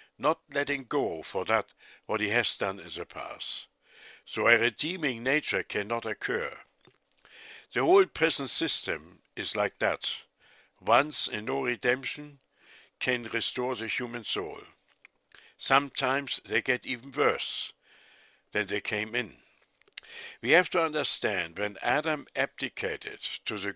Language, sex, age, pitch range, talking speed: English, male, 60-79, 110-140 Hz, 130 wpm